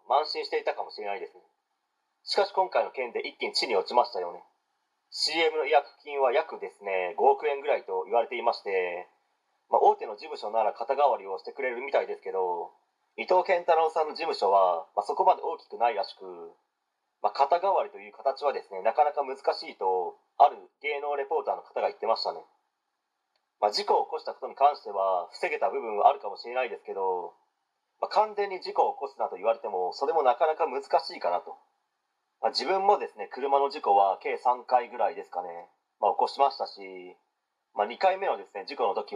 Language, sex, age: Japanese, male, 30-49